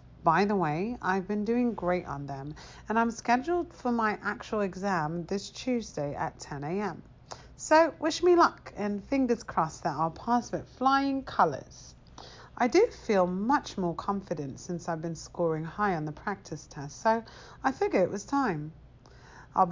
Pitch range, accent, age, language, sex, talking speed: 165-245 Hz, British, 40-59, English, female, 165 wpm